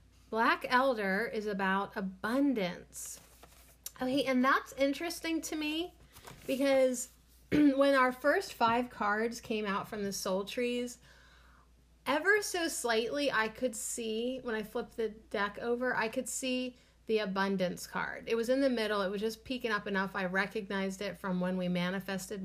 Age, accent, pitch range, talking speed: 30-49, American, 190-250 Hz, 160 wpm